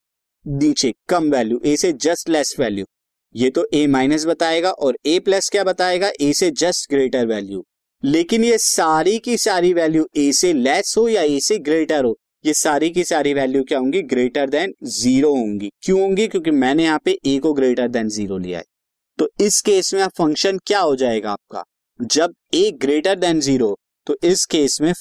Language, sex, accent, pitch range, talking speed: Hindi, male, native, 130-190 Hz, 190 wpm